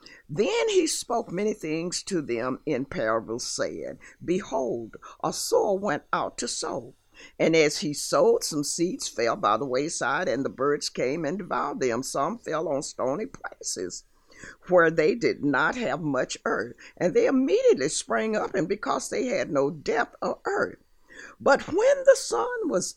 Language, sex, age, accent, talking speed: English, female, 60-79, American, 165 wpm